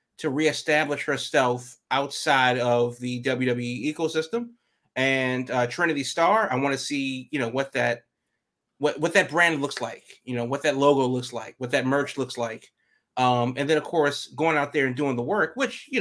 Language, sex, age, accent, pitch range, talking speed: English, male, 30-49, American, 125-155 Hz, 195 wpm